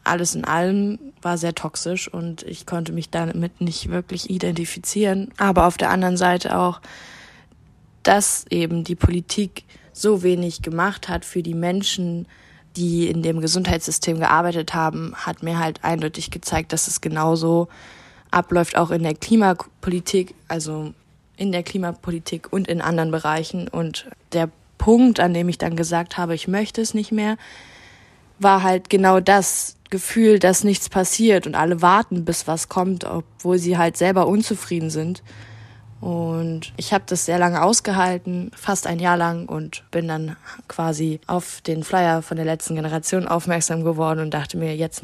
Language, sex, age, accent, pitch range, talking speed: German, female, 20-39, German, 165-195 Hz, 160 wpm